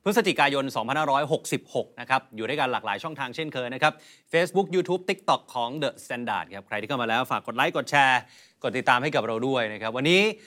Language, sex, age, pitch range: Thai, male, 30-49, 135-175 Hz